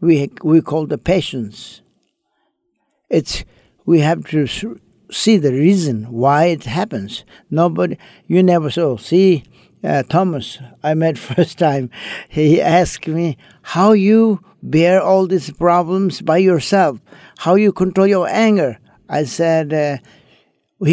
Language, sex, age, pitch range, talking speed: English, male, 60-79, 150-180 Hz, 125 wpm